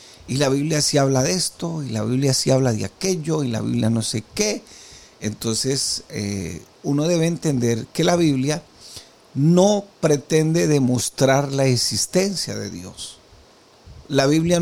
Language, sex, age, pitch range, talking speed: Spanish, male, 50-69, 120-165 Hz, 150 wpm